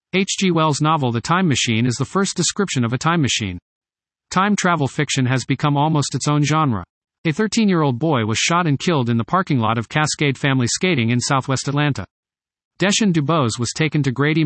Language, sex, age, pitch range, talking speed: English, male, 40-59, 125-165 Hz, 195 wpm